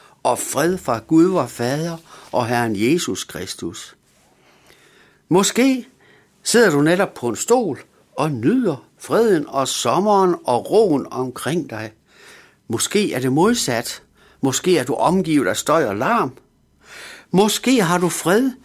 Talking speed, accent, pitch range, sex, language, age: 135 wpm, native, 125-195 Hz, male, Danish, 60-79